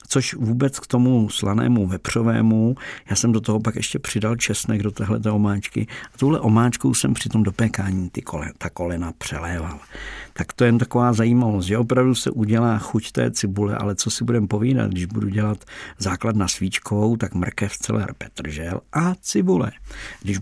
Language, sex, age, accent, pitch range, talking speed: Czech, male, 50-69, native, 100-120 Hz, 175 wpm